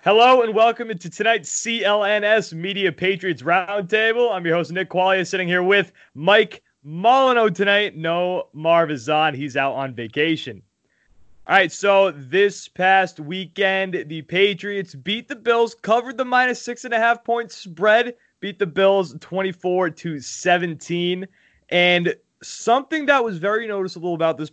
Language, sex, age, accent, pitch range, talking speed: English, male, 20-39, American, 155-205 Hz, 150 wpm